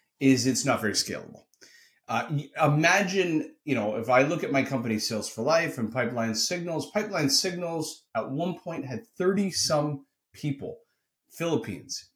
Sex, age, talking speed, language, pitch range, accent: male, 30-49, 155 wpm, English, 110-160 Hz, American